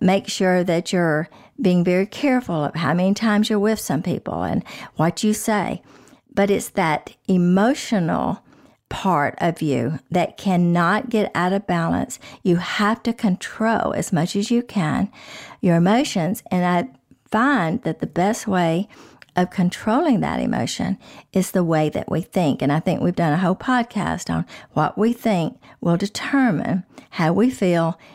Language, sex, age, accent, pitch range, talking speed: English, female, 50-69, American, 170-210 Hz, 165 wpm